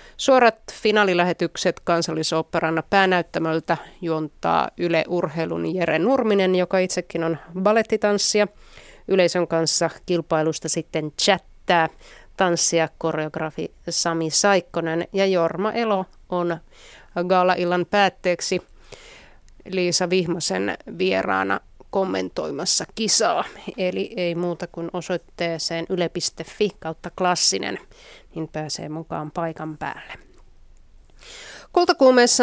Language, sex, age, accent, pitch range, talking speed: Finnish, female, 30-49, native, 165-195 Hz, 85 wpm